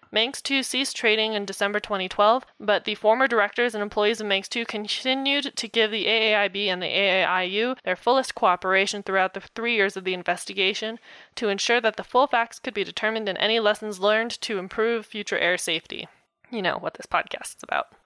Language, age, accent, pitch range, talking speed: English, 20-39, American, 195-225 Hz, 195 wpm